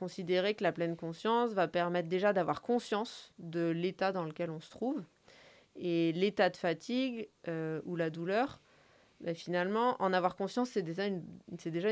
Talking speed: 175 wpm